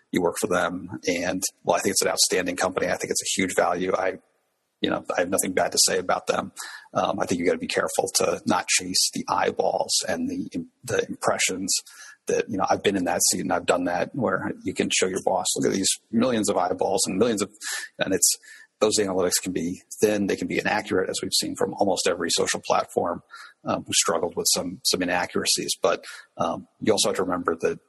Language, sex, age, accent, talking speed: English, male, 40-59, American, 230 wpm